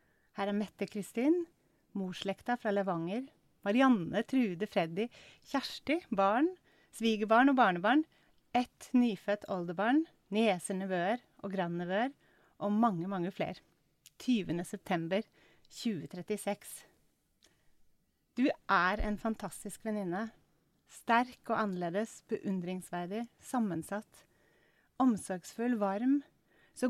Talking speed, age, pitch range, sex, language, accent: 95 wpm, 30-49, 195-245 Hz, female, English, Swedish